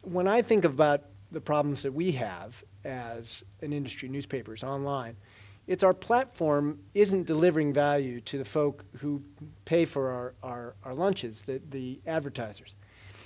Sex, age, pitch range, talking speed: male, 40-59, 115-175 Hz, 145 wpm